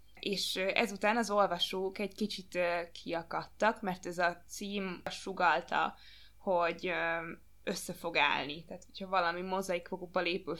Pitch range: 175-200 Hz